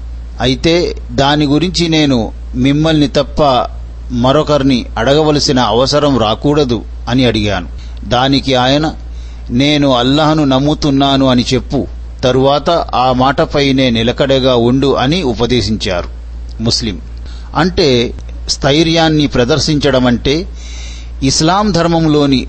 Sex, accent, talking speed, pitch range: male, native, 85 wpm, 115-150 Hz